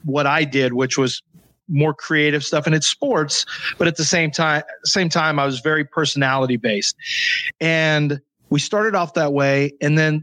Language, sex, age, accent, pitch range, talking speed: English, male, 30-49, American, 145-175 Hz, 180 wpm